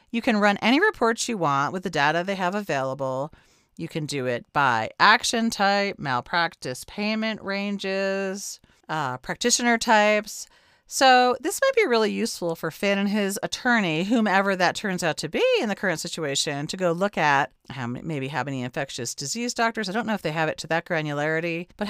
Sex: female